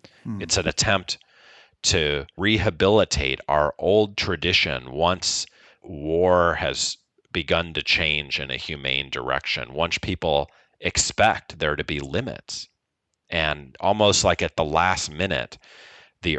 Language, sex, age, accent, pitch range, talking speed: English, male, 40-59, American, 70-90 Hz, 120 wpm